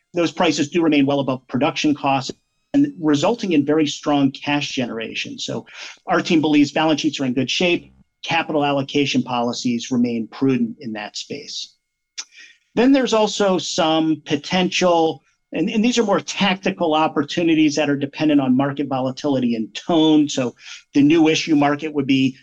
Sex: male